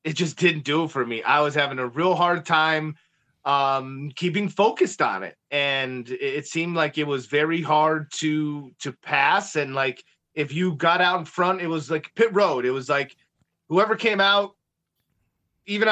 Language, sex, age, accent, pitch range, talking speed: English, male, 30-49, American, 150-185 Hz, 190 wpm